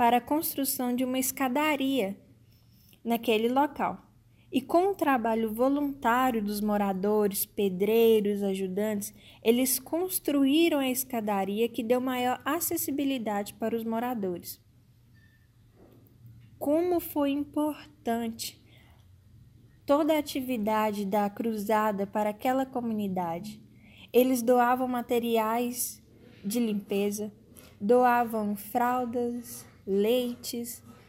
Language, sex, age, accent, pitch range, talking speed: Portuguese, female, 10-29, Brazilian, 205-265 Hz, 90 wpm